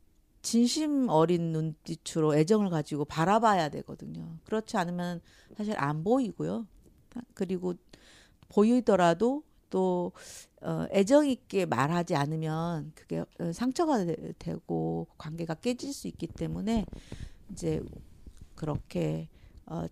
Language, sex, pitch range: Korean, female, 140-195 Hz